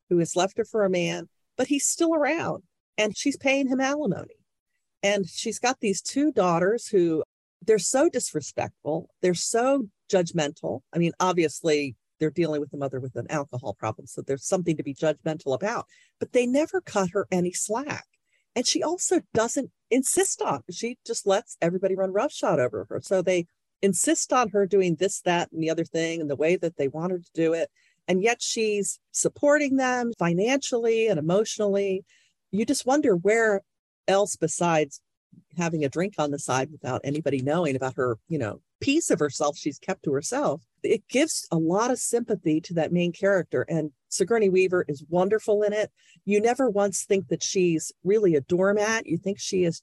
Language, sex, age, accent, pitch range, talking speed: English, female, 40-59, American, 160-230 Hz, 185 wpm